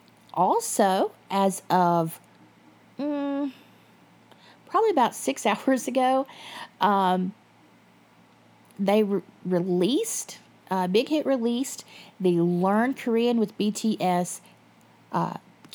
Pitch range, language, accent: 185-235 Hz, English, American